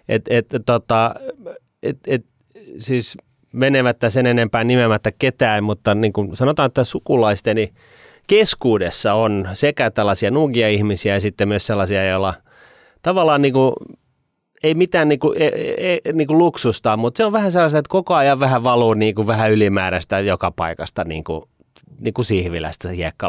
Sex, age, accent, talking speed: male, 30-49, native, 145 wpm